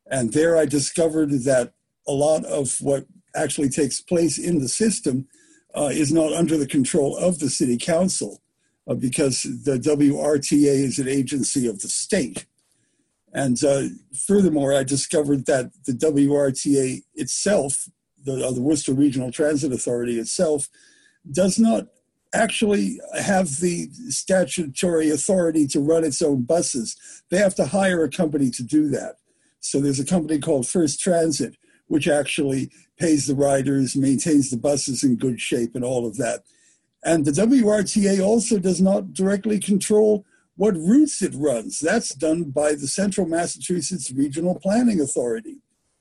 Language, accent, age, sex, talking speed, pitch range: English, American, 50-69, male, 150 wpm, 140-190 Hz